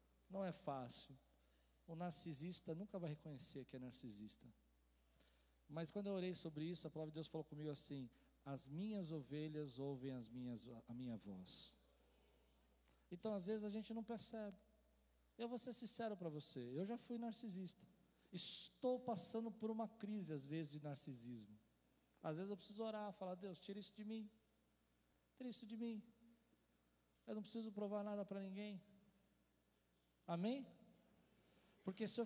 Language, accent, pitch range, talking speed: Portuguese, Brazilian, 125-195 Hz, 160 wpm